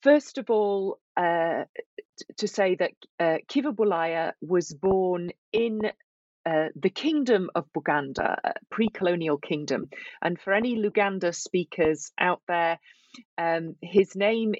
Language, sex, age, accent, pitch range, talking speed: English, female, 40-59, British, 160-220 Hz, 125 wpm